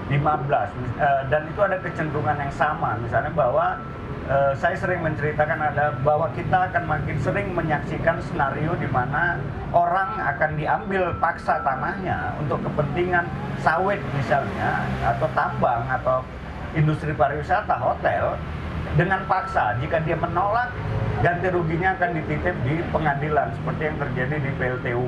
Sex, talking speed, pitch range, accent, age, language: male, 130 wpm, 130-170 Hz, native, 50-69, Indonesian